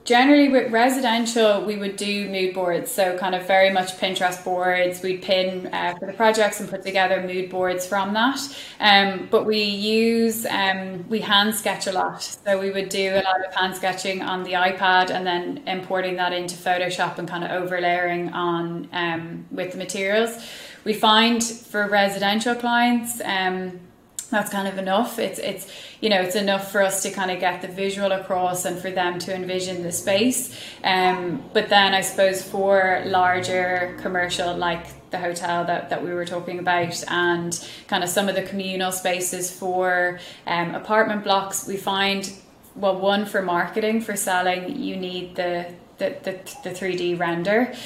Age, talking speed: 20-39, 180 wpm